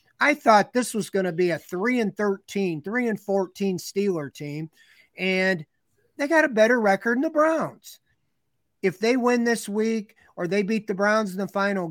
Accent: American